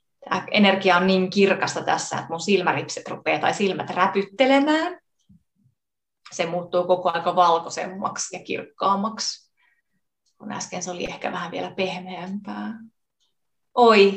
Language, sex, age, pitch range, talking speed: Finnish, female, 30-49, 160-200 Hz, 125 wpm